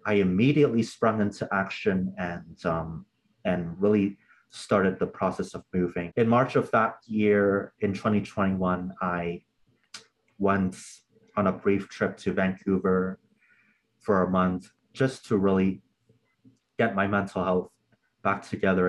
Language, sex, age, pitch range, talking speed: English, male, 30-49, 90-105 Hz, 130 wpm